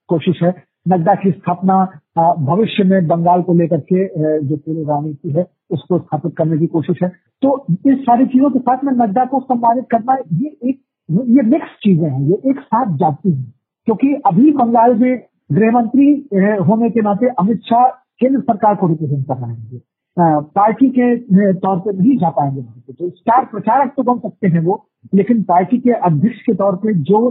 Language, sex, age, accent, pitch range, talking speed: Hindi, male, 50-69, native, 165-235 Hz, 180 wpm